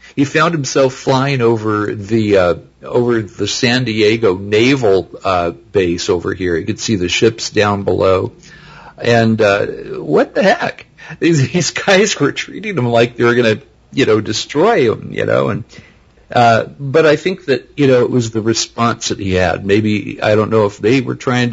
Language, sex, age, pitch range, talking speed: English, male, 50-69, 105-145 Hz, 190 wpm